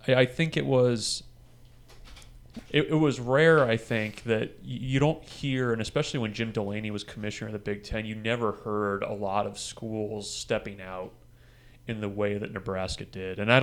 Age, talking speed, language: 30-49, 185 wpm, English